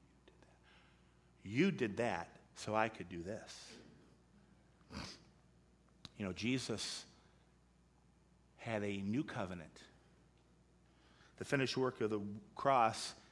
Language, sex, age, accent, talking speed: English, male, 50-69, American, 95 wpm